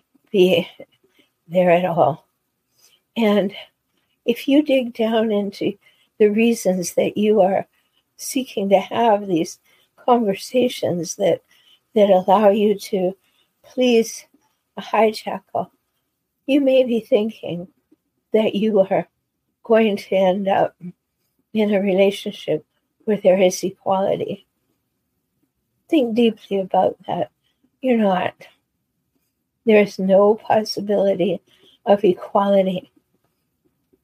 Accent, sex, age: American, female, 60-79